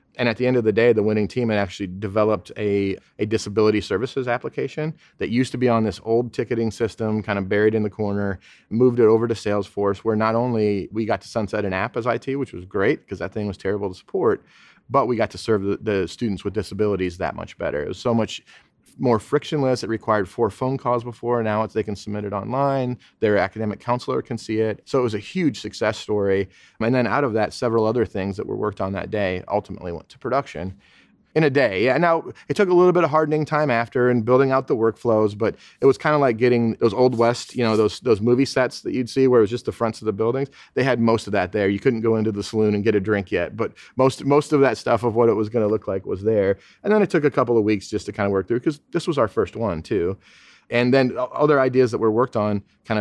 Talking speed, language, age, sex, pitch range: 260 wpm, English, 30-49, male, 105-125 Hz